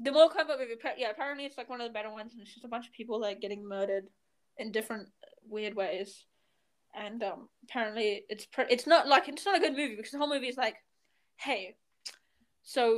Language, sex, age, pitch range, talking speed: English, female, 10-29, 215-265 Hz, 220 wpm